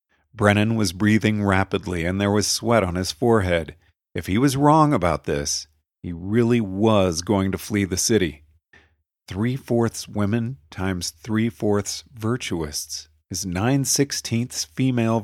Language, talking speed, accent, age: English, 130 wpm, American, 50-69